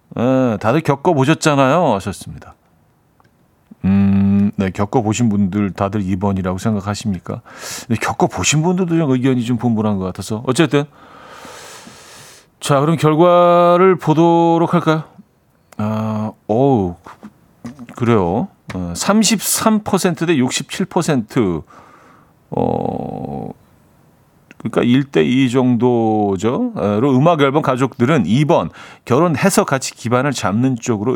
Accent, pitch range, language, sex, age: native, 105-140 Hz, Korean, male, 40-59